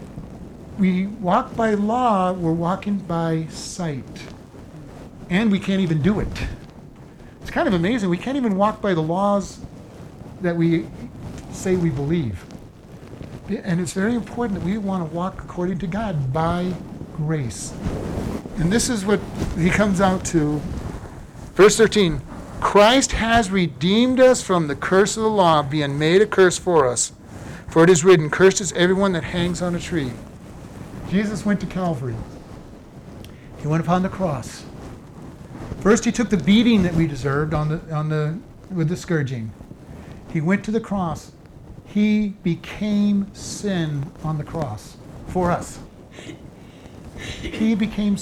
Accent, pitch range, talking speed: American, 160-205 Hz, 150 wpm